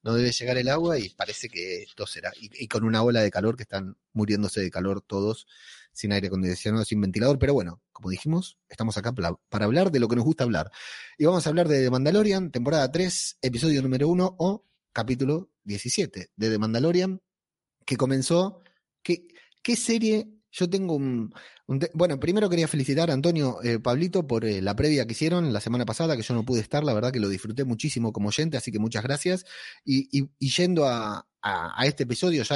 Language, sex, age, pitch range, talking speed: Spanish, male, 30-49, 110-165 Hz, 205 wpm